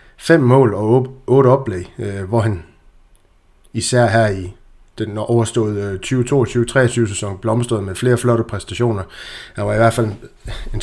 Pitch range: 105-120 Hz